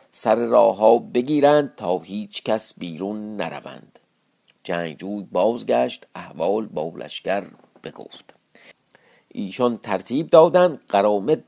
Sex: male